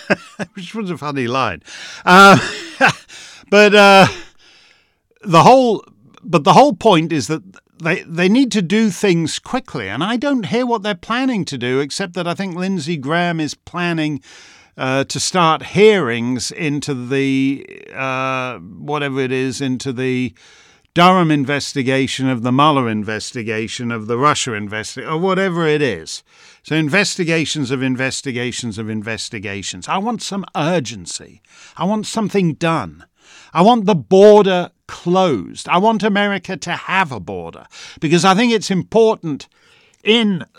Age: 50-69